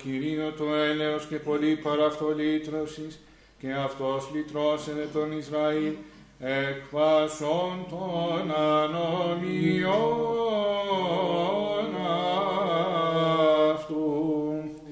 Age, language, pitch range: 50-69, Greek, 150-180 Hz